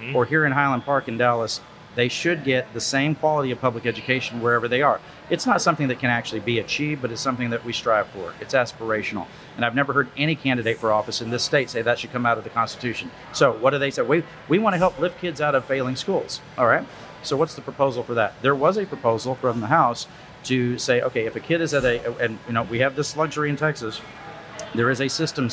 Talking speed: 255 wpm